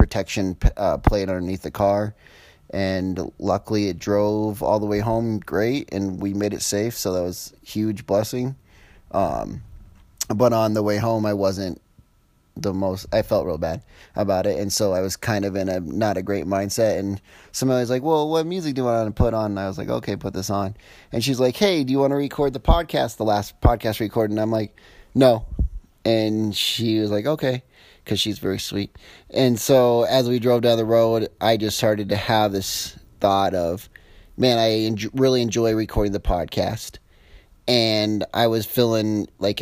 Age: 30-49